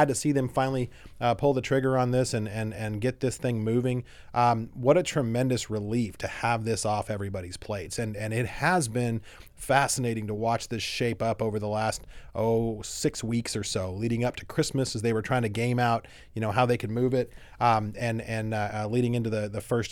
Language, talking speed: English, 225 wpm